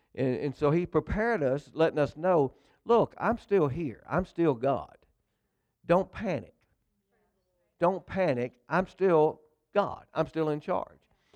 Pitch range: 125-165 Hz